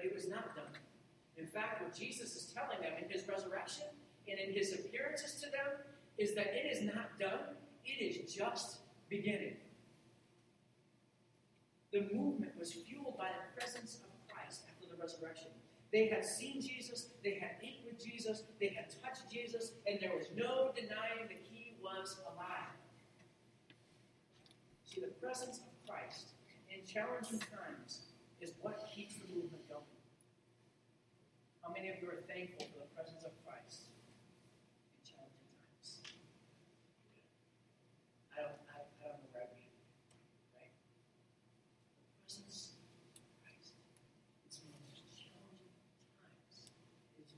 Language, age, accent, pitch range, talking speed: English, 40-59, American, 160-220 Hz, 135 wpm